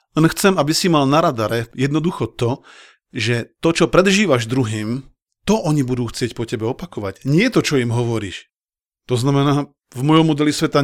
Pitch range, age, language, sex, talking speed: 120-165 Hz, 40-59, Slovak, male, 175 wpm